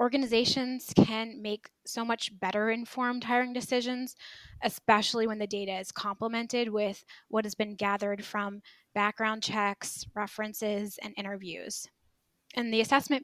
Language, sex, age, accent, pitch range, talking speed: English, female, 10-29, American, 205-235 Hz, 130 wpm